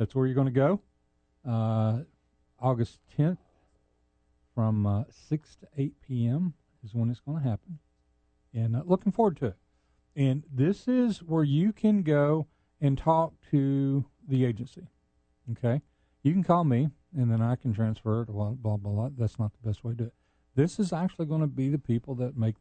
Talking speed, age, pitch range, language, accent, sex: 190 wpm, 50-69, 105-145 Hz, English, American, male